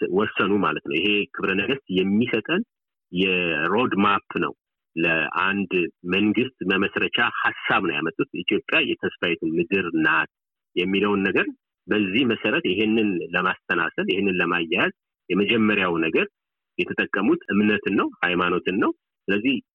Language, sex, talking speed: Amharic, male, 105 wpm